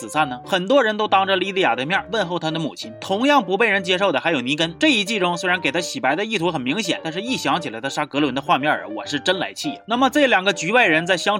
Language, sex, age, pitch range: Chinese, male, 30-49, 160-235 Hz